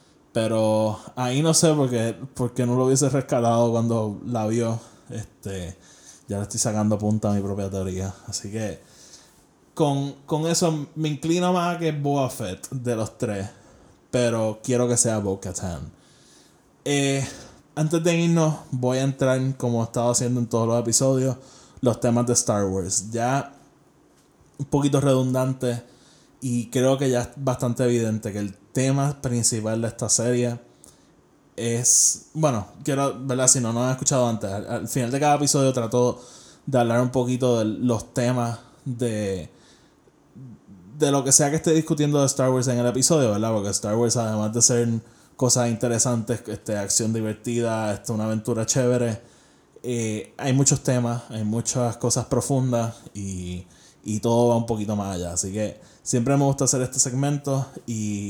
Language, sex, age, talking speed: Spanish, male, 20-39, 165 wpm